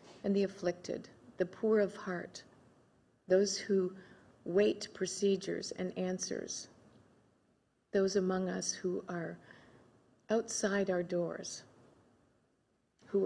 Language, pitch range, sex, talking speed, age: English, 170-195 Hz, female, 100 wpm, 50-69